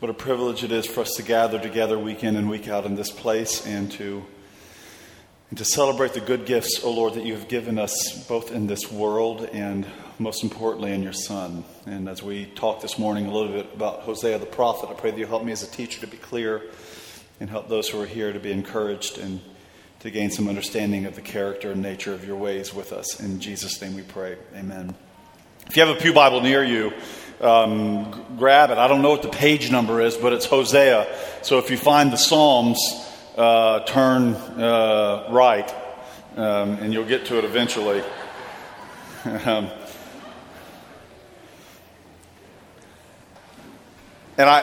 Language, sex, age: English, male, 40-59